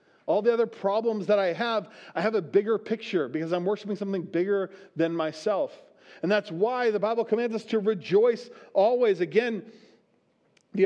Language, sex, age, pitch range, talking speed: English, male, 40-59, 185-225 Hz, 170 wpm